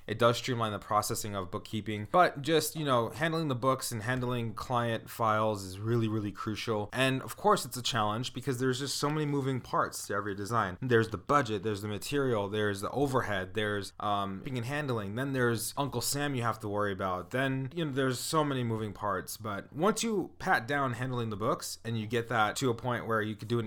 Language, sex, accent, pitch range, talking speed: English, male, American, 105-130 Hz, 225 wpm